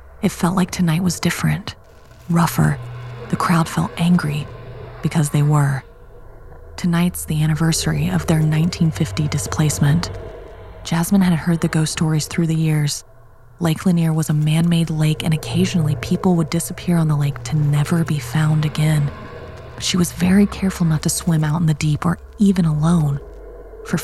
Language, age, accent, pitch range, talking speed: English, 30-49, American, 145-170 Hz, 160 wpm